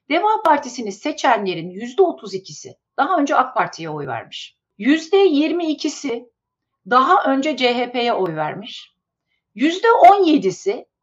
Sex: female